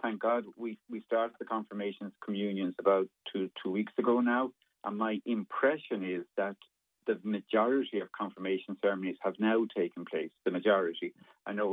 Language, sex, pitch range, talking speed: English, male, 95-110 Hz, 165 wpm